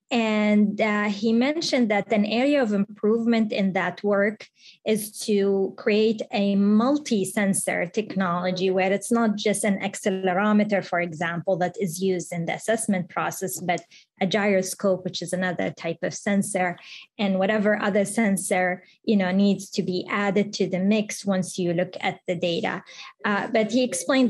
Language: English